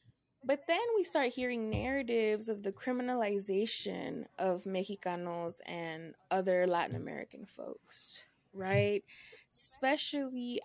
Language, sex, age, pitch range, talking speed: English, female, 20-39, 195-245 Hz, 100 wpm